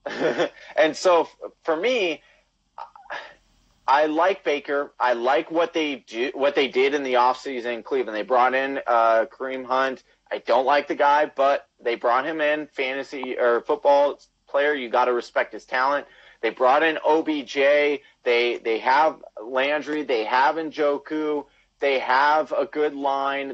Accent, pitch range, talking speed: American, 135-175 Hz, 160 wpm